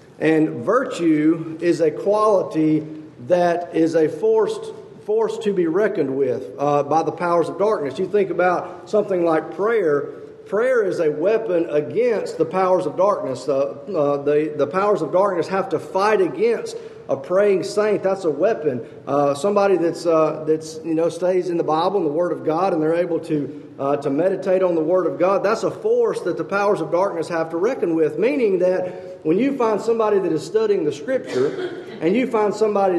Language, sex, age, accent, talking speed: English, male, 40-59, American, 195 wpm